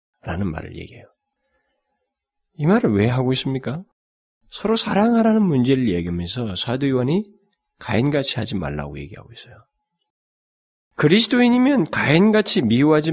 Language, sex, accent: Korean, male, native